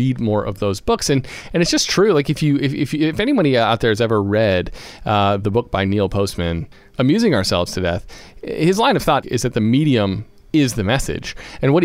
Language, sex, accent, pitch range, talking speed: English, male, American, 105-140 Hz, 230 wpm